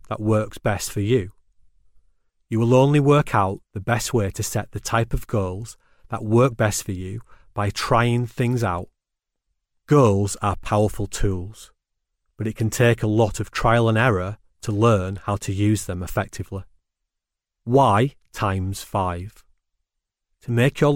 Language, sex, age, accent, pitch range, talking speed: English, male, 40-59, British, 95-120 Hz, 155 wpm